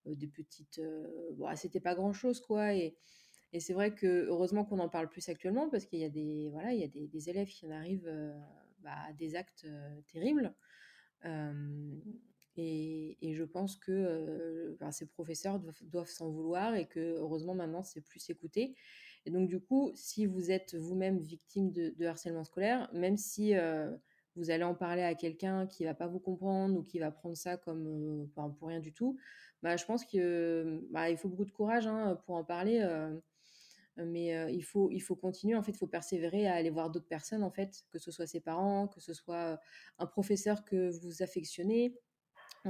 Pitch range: 165-195 Hz